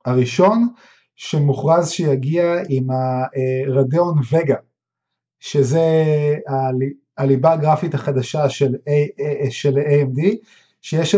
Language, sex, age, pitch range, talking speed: Hebrew, male, 30-49, 130-165 Hz, 70 wpm